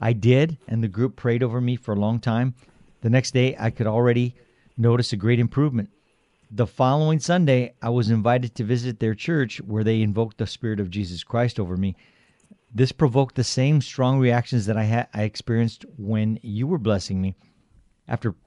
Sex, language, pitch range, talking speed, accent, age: male, English, 110-125 Hz, 190 wpm, American, 50-69